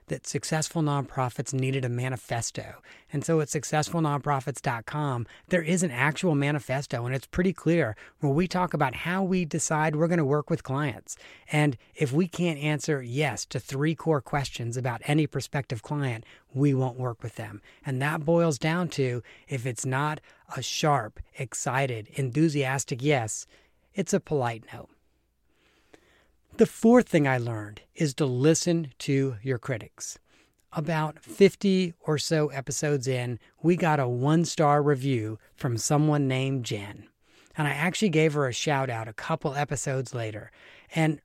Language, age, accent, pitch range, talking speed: English, 40-59, American, 130-160 Hz, 155 wpm